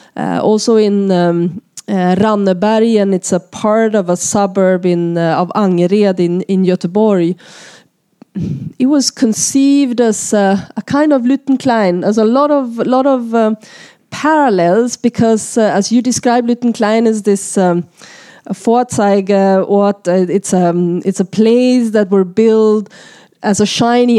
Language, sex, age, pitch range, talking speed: Swedish, female, 20-39, 185-225 Hz, 150 wpm